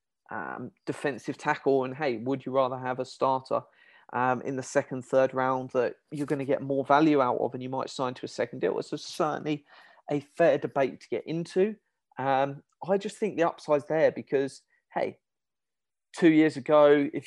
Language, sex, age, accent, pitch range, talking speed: English, male, 30-49, British, 130-155 Hz, 190 wpm